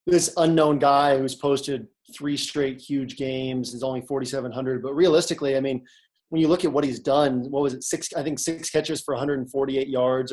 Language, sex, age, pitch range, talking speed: English, male, 20-39, 130-150 Hz, 200 wpm